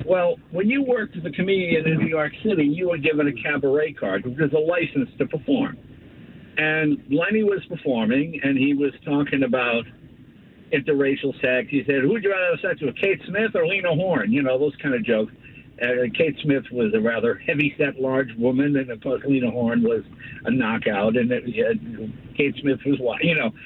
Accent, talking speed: American, 200 wpm